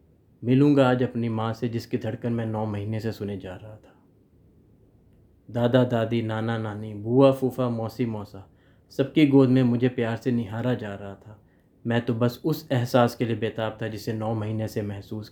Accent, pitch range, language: native, 100-125 Hz, Hindi